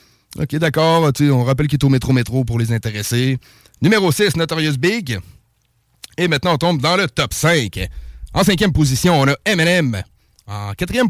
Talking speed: 180 wpm